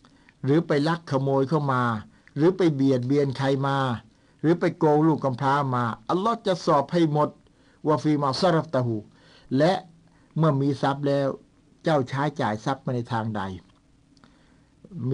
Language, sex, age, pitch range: Thai, male, 60-79, 125-150 Hz